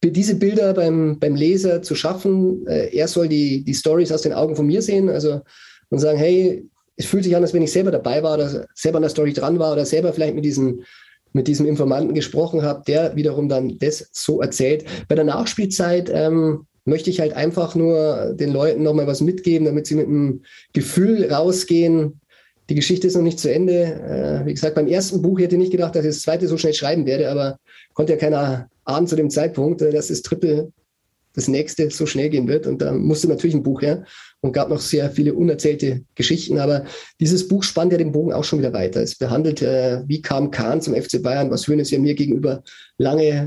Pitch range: 145-170 Hz